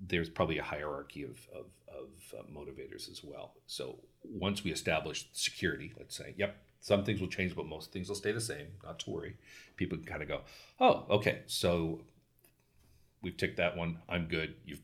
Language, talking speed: English, 190 wpm